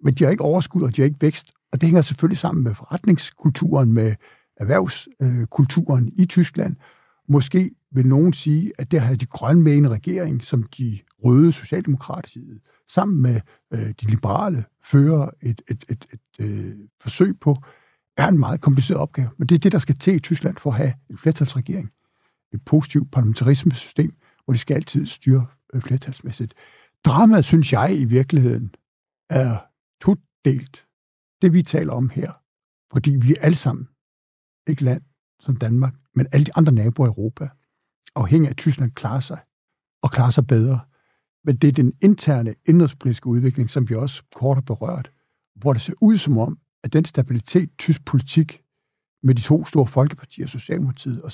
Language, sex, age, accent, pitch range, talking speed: Danish, male, 60-79, native, 125-160 Hz, 170 wpm